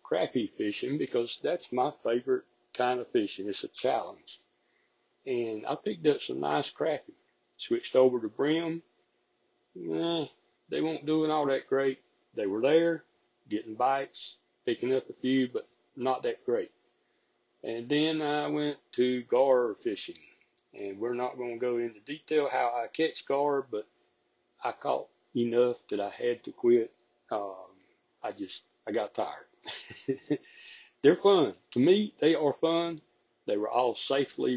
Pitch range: 125-160 Hz